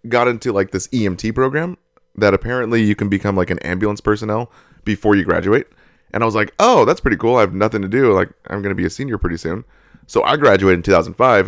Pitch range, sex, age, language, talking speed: 95-115 Hz, male, 30-49, English, 230 wpm